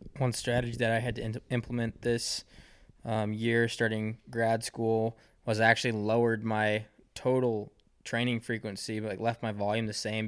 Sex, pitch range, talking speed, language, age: male, 105-115 Hz, 165 wpm, English, 20-39